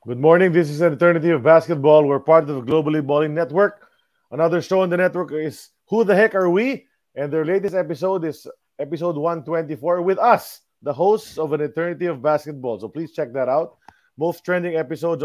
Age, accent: 20-39, Filipino